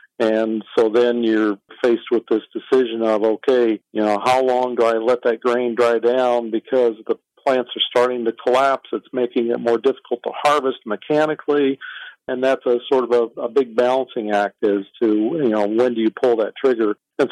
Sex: male